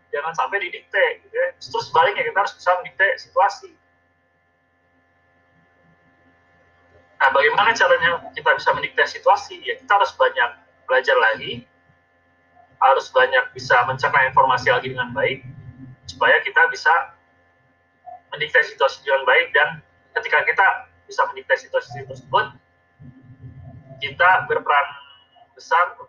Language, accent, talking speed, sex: Indonesian, native, 115 wpm, male